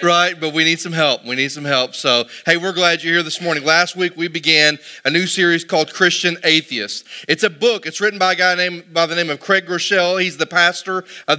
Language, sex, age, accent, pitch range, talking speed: English, male, 30-49, American, 165-205 Hz, 250 wpm